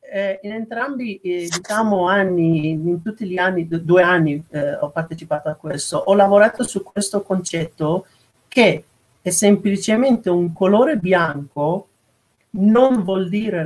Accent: native